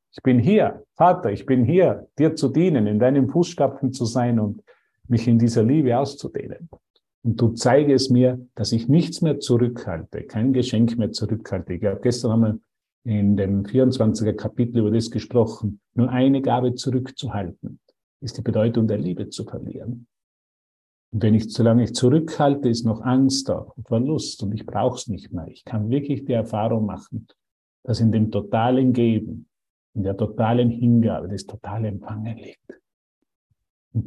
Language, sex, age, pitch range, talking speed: German, male, 50-69, 105-125 Hz, 165 wpm